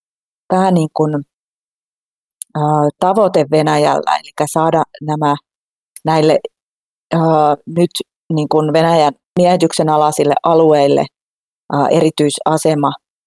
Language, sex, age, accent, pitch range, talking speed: Finnish, female, 30-49, native, 145-165 Hz, 85 wpm